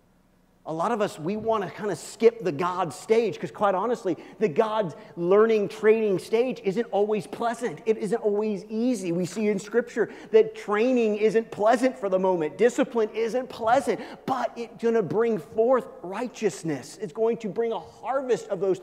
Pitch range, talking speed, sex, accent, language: 205-245 Hz, 180 wpm, male, American, English